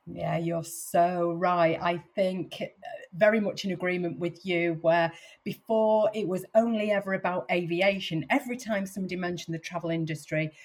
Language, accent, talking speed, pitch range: English, British, 150 wpm, 165-215 Hz